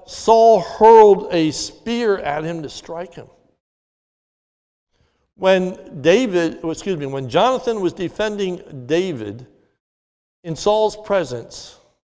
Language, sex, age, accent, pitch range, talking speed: English, male, 60-79, American, 135-205 Hz, 105 wpm